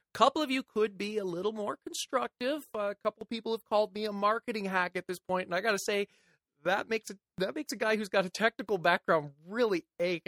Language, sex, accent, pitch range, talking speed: English, male, American, 155-200 Hz, 245 wpm